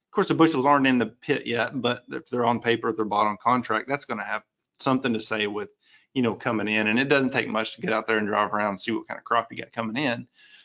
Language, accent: English, American